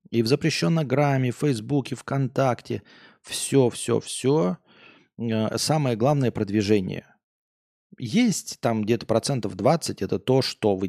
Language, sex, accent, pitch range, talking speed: Russian, male, native, 100-130 Hz, 125 wpm